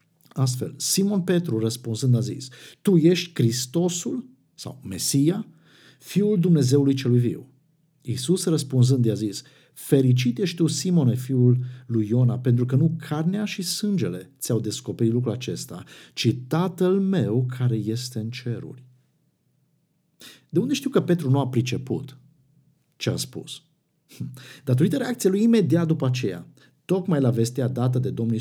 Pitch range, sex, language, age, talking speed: 120-160 Hz, male, Romanian, 50-69, 140 wpm